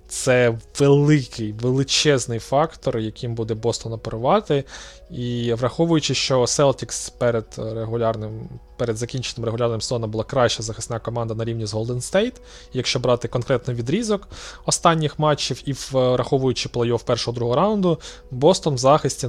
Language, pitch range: Ukrainian, 115-140 Hz